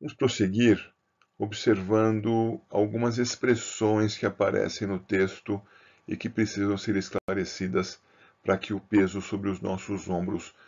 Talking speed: 125 wpm